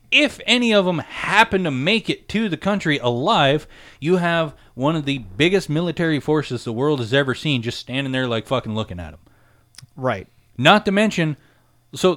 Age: 30-49